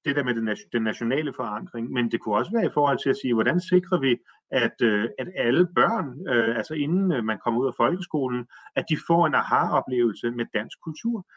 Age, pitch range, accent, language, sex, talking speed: 30-49, 115-165 Hz, native, Danish, male, 200 wpm